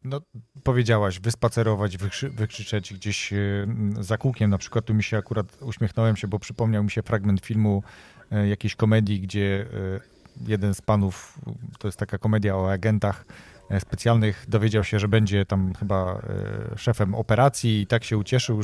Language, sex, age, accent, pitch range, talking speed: Polish, male, 40-59, native, 100-115 Hz, 155 wpm